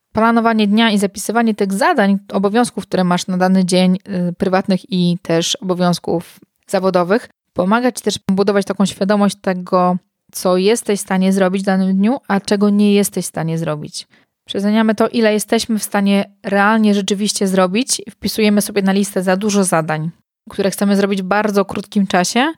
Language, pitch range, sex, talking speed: Polish, 195-230 Hz, female, 165 wpm